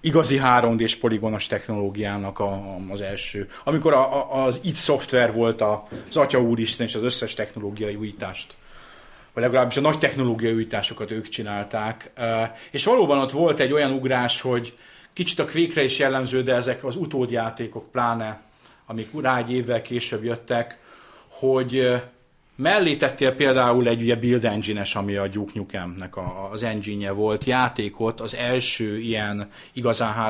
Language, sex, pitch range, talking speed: Hungarian, male, 105-130 Hz, 140 wpm